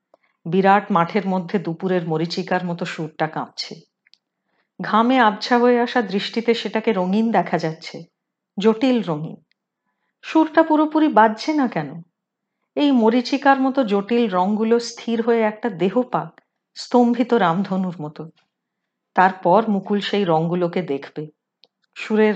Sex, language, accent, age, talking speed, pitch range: female, Hindi, native, 40-59, 80 wpm, 185-250 Hz